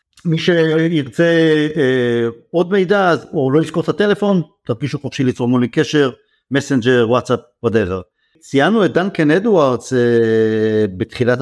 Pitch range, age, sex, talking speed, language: 140-205 Hz, 50-69, male, 130 wpm, Hebrew